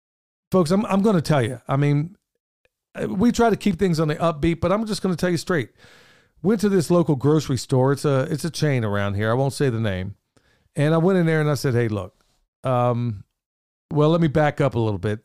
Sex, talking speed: male, 240 wpm